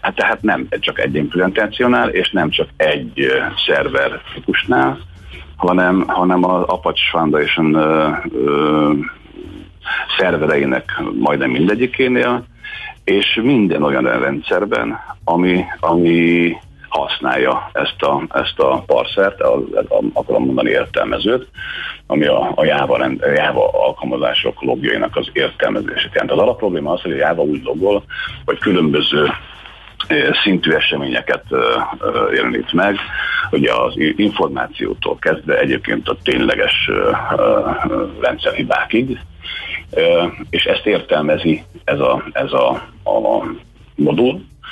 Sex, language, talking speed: male, Hungarian, 115 wpm